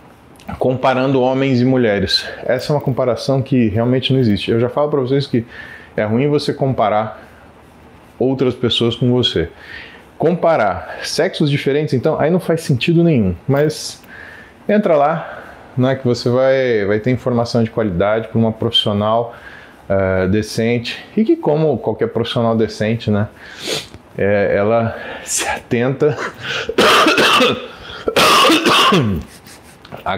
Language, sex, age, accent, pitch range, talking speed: Portuguese, male, 20-39, Brazilian, 115-175 Hz, 125 wpm